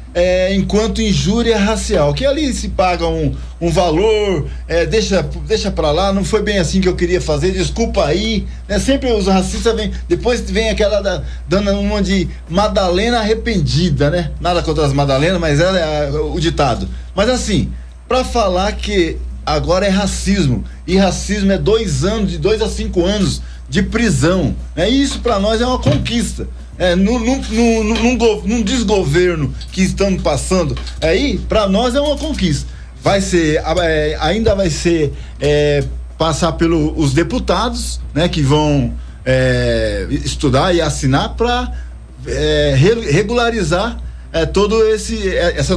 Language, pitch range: Portuguese, 150-210 Hz